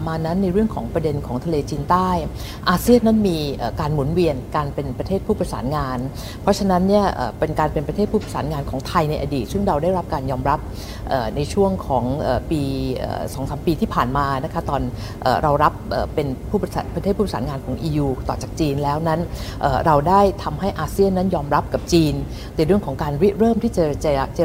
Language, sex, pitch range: Thai, female, 140-190 Hz